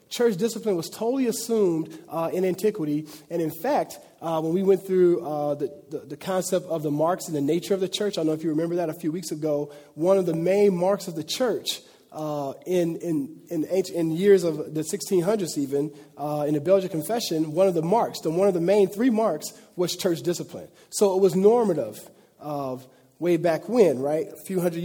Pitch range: 160-195 Hz